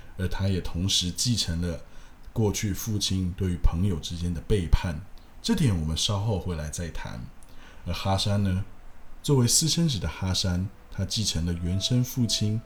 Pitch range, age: 85-110 Hz, 20-39